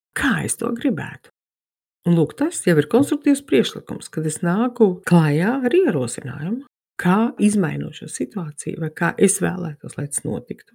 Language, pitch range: English, 150-195 Hz